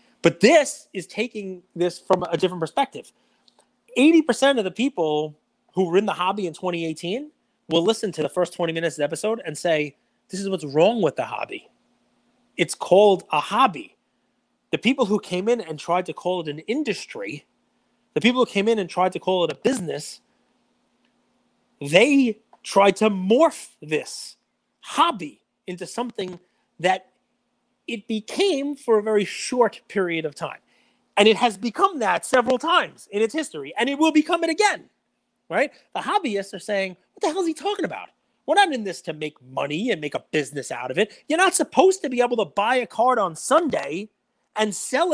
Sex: male